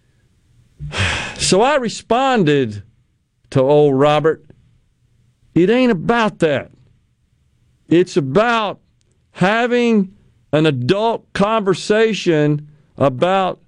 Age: 50-69